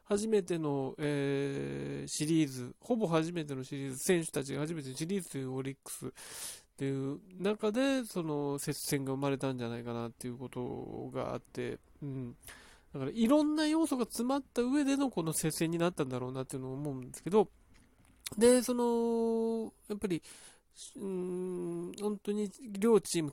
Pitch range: 140-210 Hz